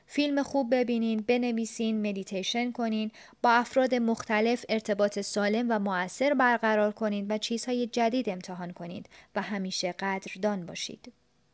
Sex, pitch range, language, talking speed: female, 205-240 Hz, Persian, 125 wpm